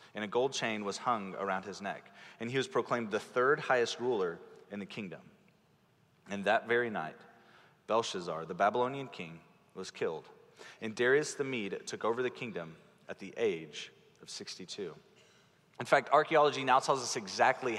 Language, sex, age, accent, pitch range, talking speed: English, male, 30-49, American, 110-165 Hz, 170 wpm